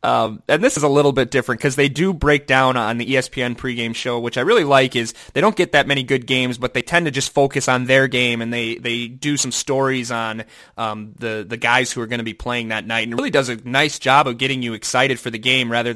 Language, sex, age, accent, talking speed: English, male, 20-39, American, 275 wpm